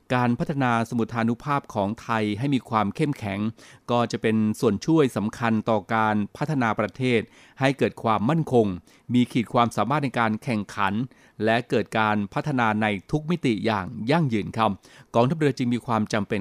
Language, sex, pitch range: Thai, male, 105-130 Hz